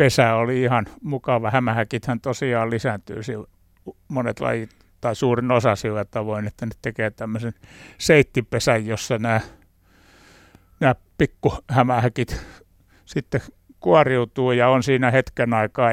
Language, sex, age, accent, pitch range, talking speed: Finnish, male, 60-79, native, 110-130 Hz, 115 wpm